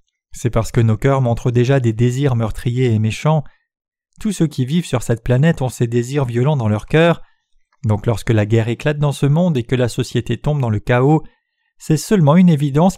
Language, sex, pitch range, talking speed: French, male, 120-155 Hz, 215 wpm